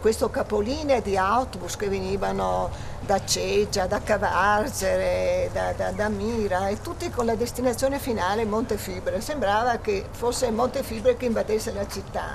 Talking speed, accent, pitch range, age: 140 wpm, native, 170-245 Hz, 50-69